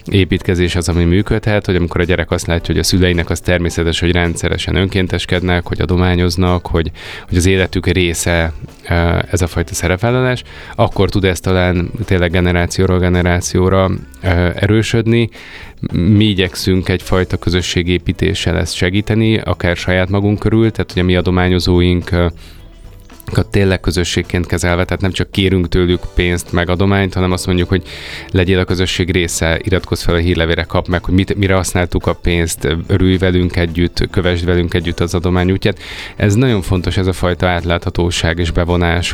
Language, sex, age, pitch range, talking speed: Hungarian, male, 20-39, 85-100 Hz, 155 wpm